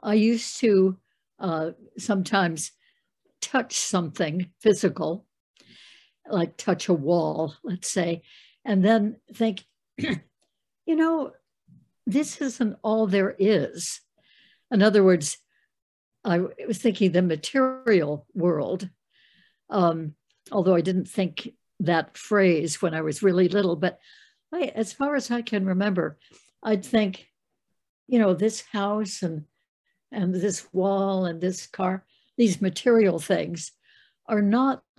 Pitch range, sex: 180-220 Hz, female